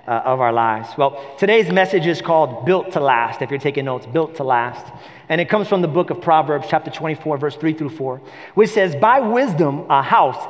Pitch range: 130-180 Hz